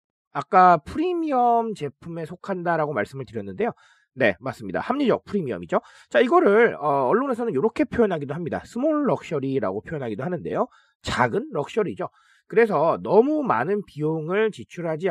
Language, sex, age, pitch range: Korean, male, 40-59, 160-235 Hz